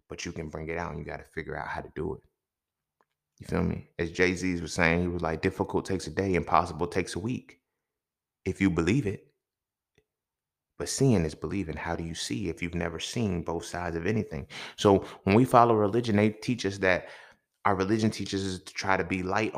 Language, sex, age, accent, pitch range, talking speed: English, male, 20-39, American, 90-110 Hz, 220 wpm